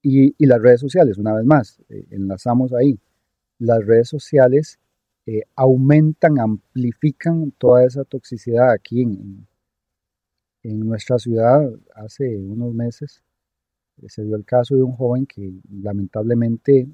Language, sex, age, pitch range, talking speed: Spanish, male, 40-59, 105-140 Hz, 135 wpm